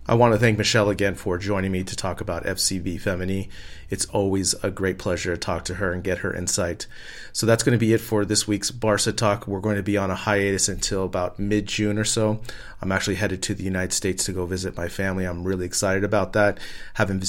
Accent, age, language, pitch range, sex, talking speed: American, 30-49, English, 95-105 Hz, male, 235 wpm